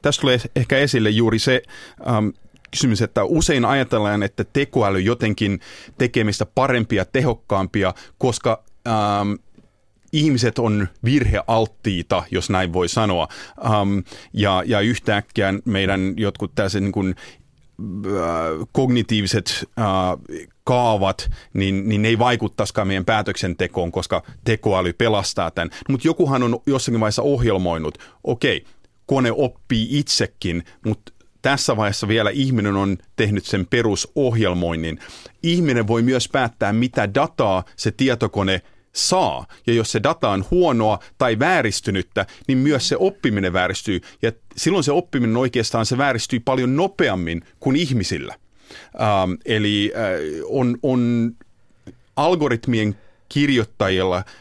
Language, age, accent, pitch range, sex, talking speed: Finnish, 30-49, native, 95-125 Hz, male, 120 wpm